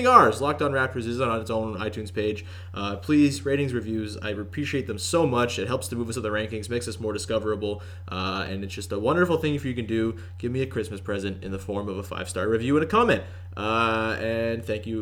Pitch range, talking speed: 105-140 Hz, 250 wpm